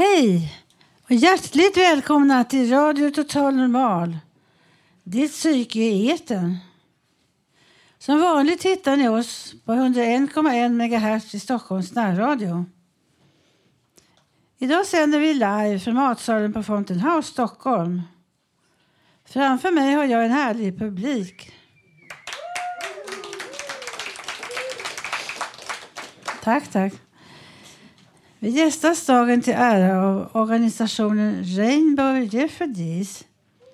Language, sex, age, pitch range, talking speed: Swedish, female, 60-79, 200-280 Hz, 90 wpm